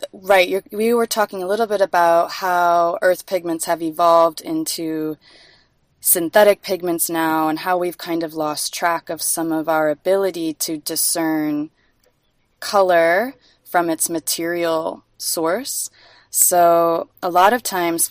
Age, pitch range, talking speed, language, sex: 20-39, 160-190 Hz, 140 wpm, English, female